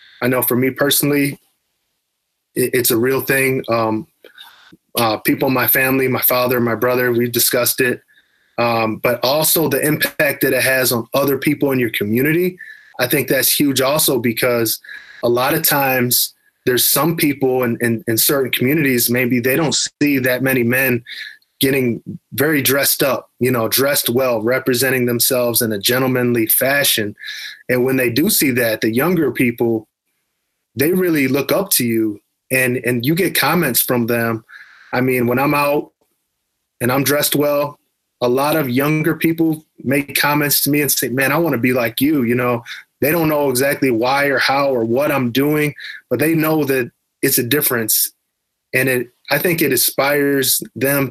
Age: 20-39